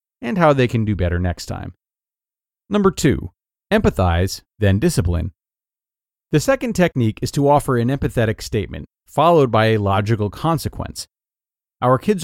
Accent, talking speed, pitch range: American, 140 wpm, 100-140 Hz